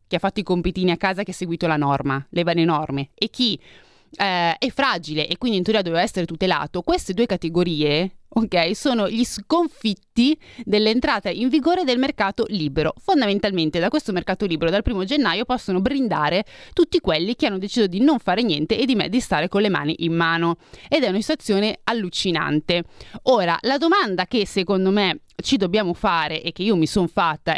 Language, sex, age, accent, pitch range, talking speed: Italian, female, 30-49, native, 165-225 Hz, 190 wpm